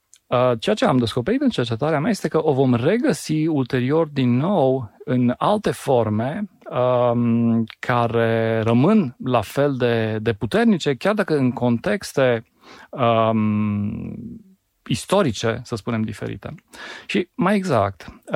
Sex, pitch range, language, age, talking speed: male, 110-145 Hz, Romanian, 40-59, 120 wpm